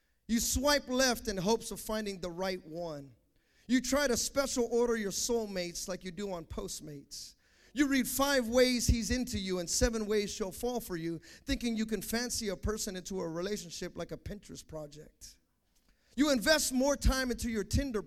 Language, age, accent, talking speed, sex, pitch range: English, 30-49, American, 185 wpm, male, 180-245 Hz